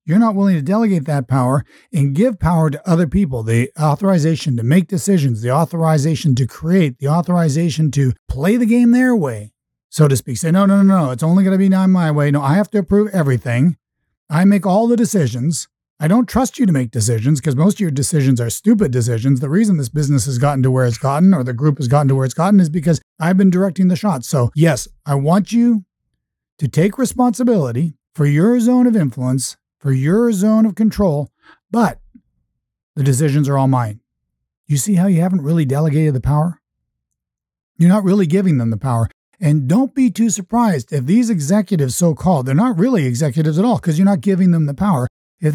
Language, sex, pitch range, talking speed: English, male, 140-200 Hz, 210 wpm